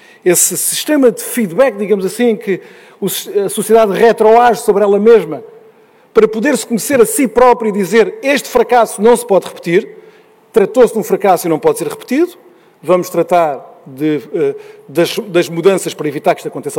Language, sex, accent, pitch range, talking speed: Portuguese, male, Portuguese, 185-295 Hz, 170 wpm